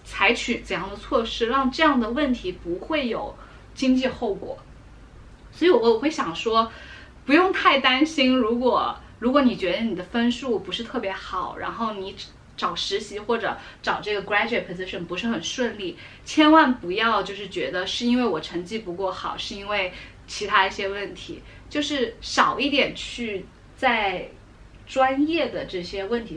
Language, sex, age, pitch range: Chinese, female, 20-39, 195-265 Hz